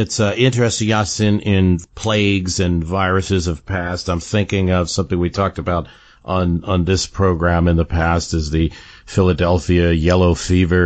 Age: 50-69